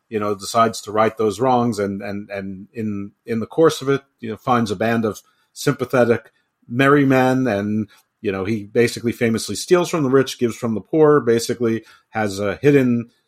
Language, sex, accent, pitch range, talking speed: English, male, American, 105-125 Hz, 195 wpm